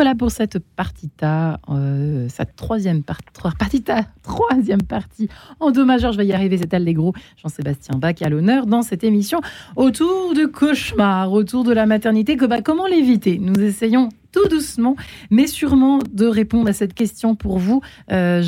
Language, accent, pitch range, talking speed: French, French, 170-220 Hz, 160 wpm